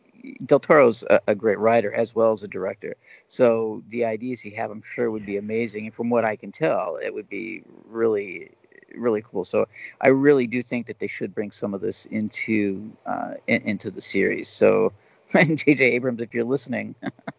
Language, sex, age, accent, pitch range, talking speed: English, male, 50-69, American, 115-145 Hz, 195 wpm